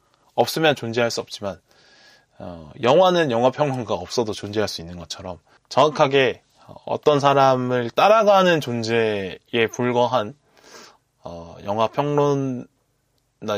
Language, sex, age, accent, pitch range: Korean, male, 20-39, native, 105-140 Hz